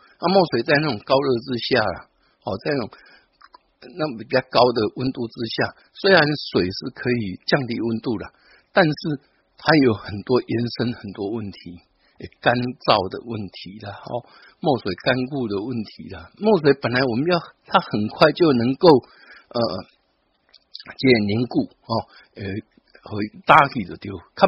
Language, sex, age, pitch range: Chinese, male, 60-79, 115-150 Hz